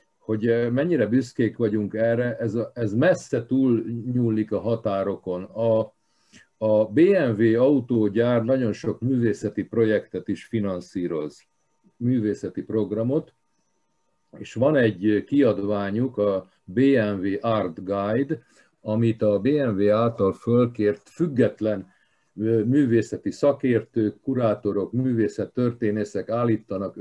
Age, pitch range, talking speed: 50-69, 105-125 Hz, 95 wpm